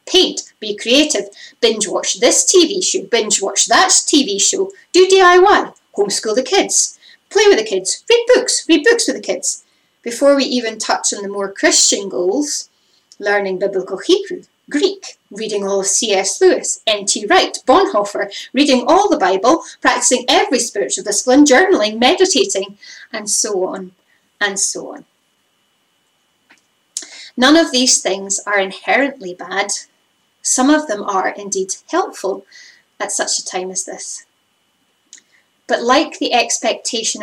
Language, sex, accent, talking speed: English, female, British, 145 wpm